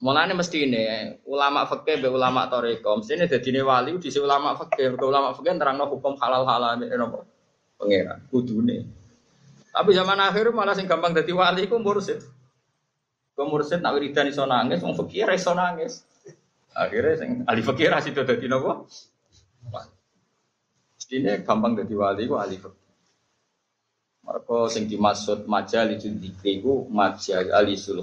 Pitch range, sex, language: 105-150 Hz, male, Malay